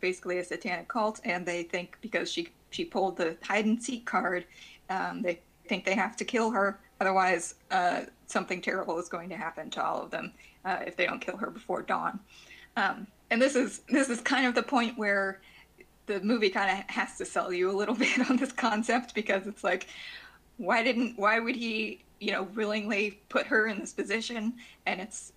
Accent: American